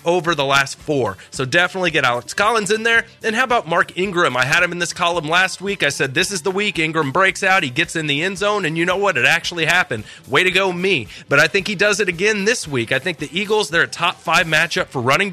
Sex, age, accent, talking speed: male, 30-49, American, 275 wpm